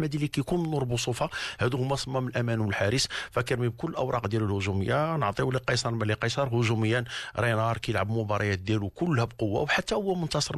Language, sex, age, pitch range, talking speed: Arabic, male, 50-69, 105-130 Hz, 175 wpm